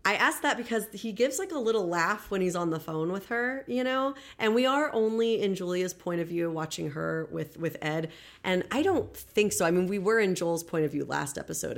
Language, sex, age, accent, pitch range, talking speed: English, female, 30-49, American, 155-205 Hz, 250 wpm